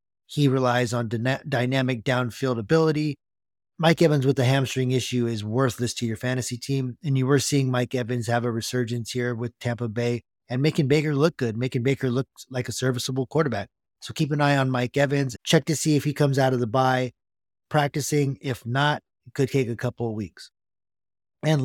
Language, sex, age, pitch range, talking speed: English, male, 30-49, 115-140 Hz, 195 wpm